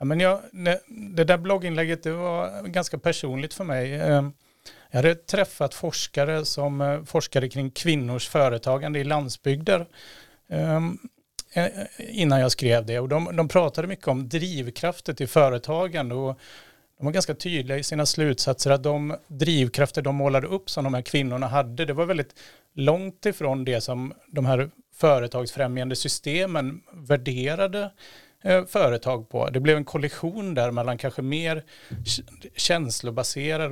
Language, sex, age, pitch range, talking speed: Swedish, male, 30-49, 130-165 Hz, 130 wpm